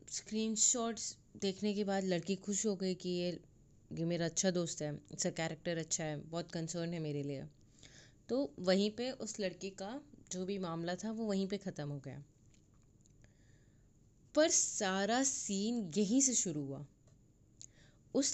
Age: 20-39